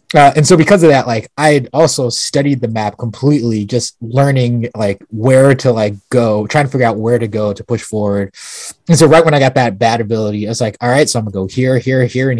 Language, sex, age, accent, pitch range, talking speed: English, male, 20-39, American, 110-140 Hz, 250 wpm